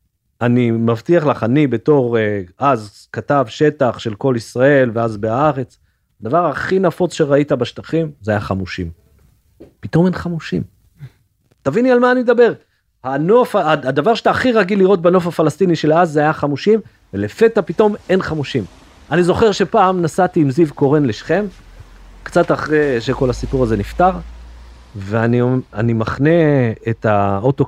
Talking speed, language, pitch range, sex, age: 135 wpm, Hebrew, 110-170 Hz, male, 40-59